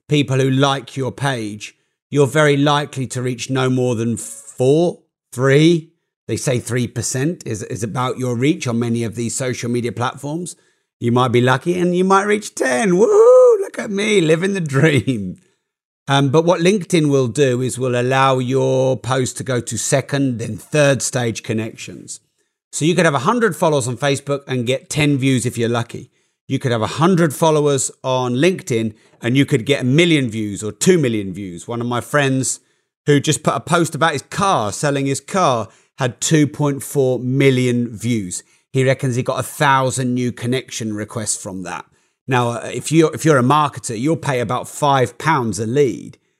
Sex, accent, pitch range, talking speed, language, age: male, British, 120-150 Hz, 180 wpm, English, 40-59